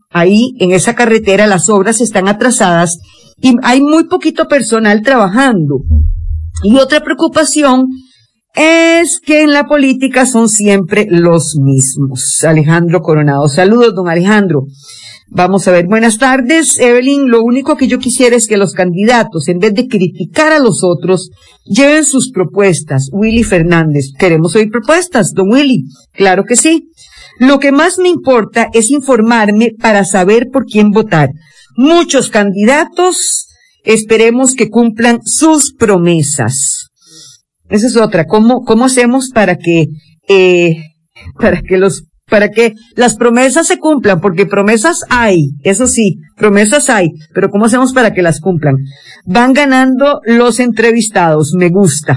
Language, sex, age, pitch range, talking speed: English, female, 50-69, 175-255 Hz, 140 wpm